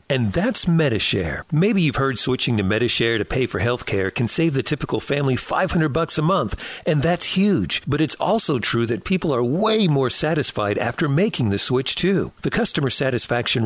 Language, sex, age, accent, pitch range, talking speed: English, male, 50-69, American, 115-175 Hz, 195 wpm